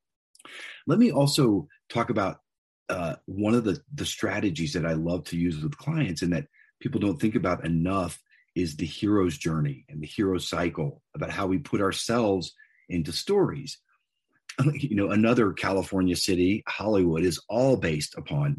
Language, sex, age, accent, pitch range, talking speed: English, male, 40-59, American, 90-130 Hz, 160 wpm